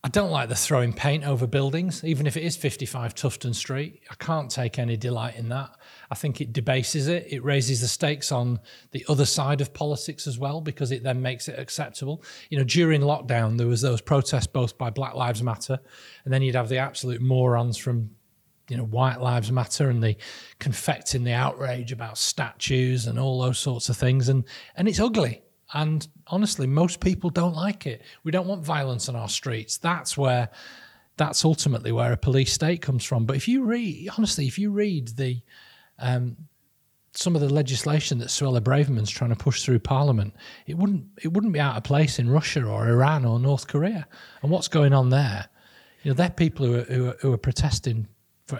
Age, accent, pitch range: 30-49, British, 125-155 Hz